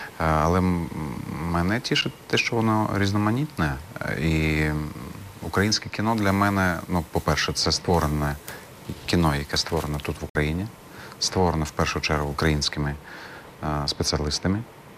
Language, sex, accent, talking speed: Ukrainian, male, native, 110 wpm